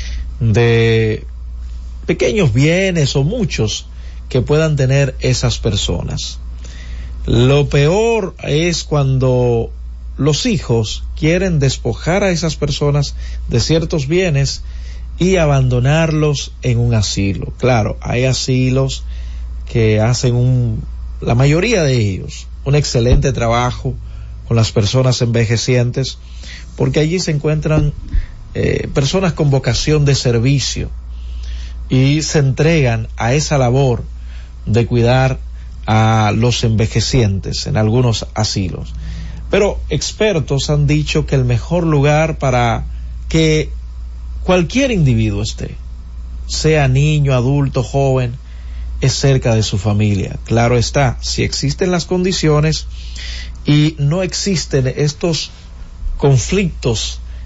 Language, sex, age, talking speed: Spanish, male, 50-69, 110 wpm